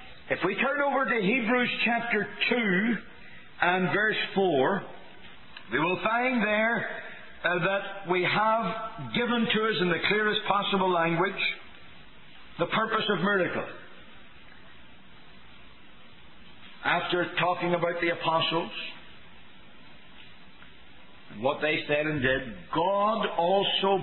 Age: 60-79